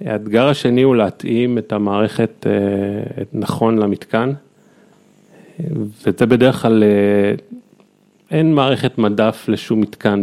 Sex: male